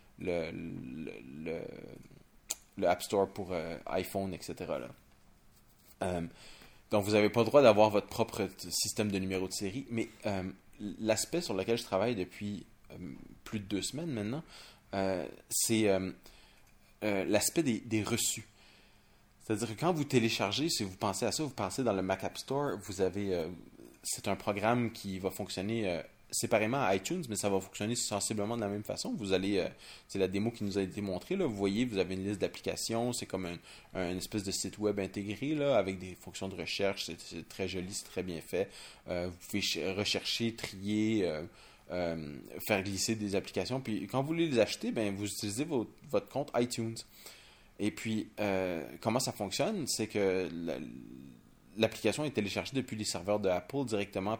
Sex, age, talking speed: male, 30-49, 190 wpm